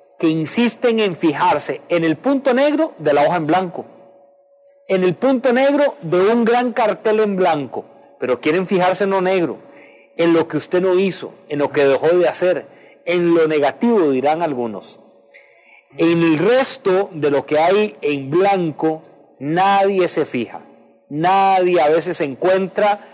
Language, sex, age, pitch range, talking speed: English, male, 40-59, 165-215 Hz, 160 wpm